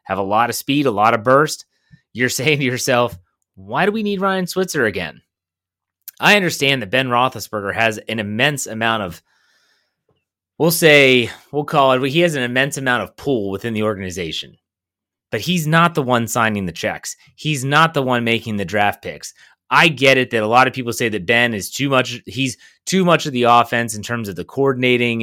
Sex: male